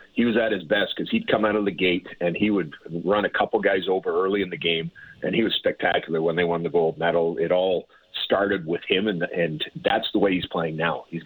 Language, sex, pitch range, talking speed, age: English, male, 85-105 Hz, 260 wpm, 40-59